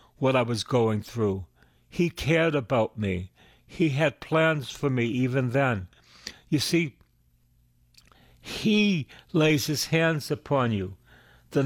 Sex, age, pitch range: male, 60-79, 105-155 Hz